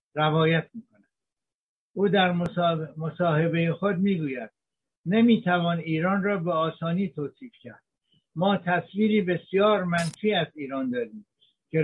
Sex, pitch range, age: male, 145-180 Hz, 60-79